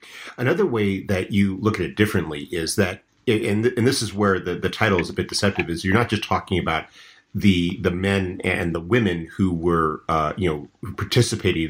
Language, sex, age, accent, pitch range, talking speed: English, male, 40-59, American, 85-110 Hz, 210 wpm